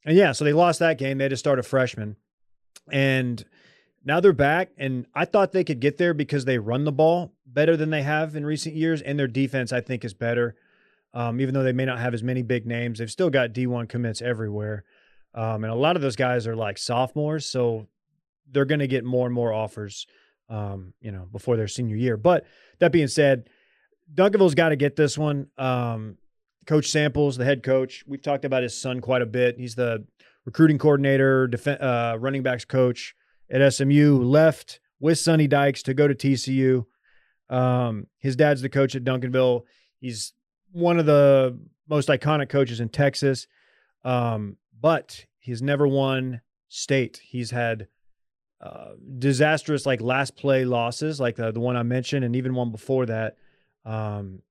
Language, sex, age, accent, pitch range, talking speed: English, male, 30-49, American, 120-145 Hz, 190 wpm